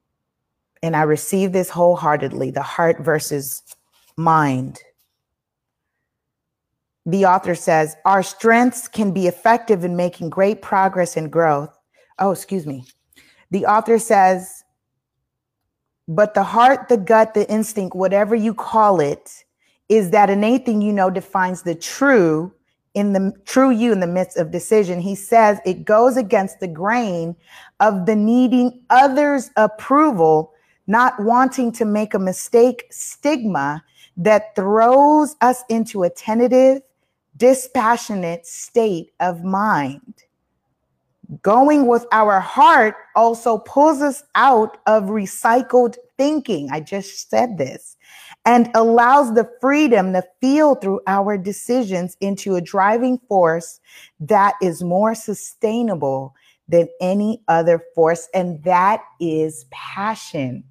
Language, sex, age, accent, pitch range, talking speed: English, female, 30-49, American, 170-230 Hz, 125 wpm